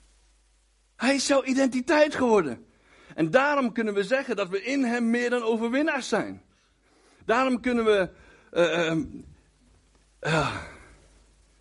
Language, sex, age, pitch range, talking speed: Dutch, male, 60-79, 130-215 Hz, 120 wpm